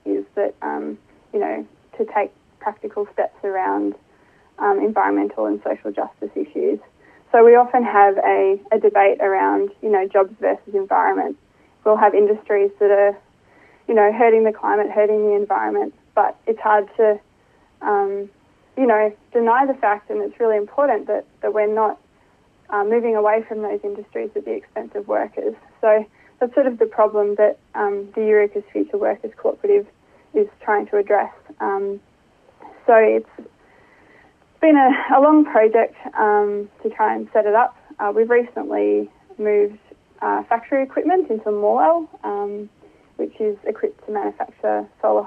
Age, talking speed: 20-39, 160 wpm